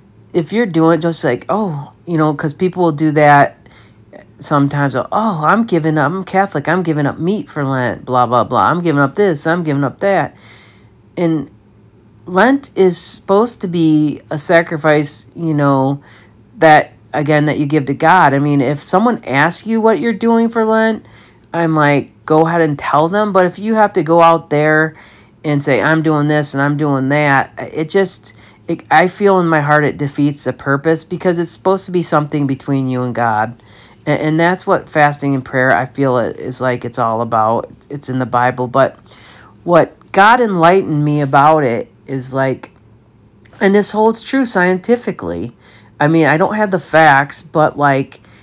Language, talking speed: English, 190 wpm